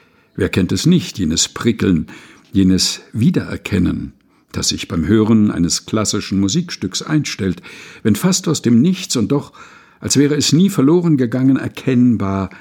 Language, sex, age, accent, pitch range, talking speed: German, male, 60-79, German, 105-155 Hz, 145 wpm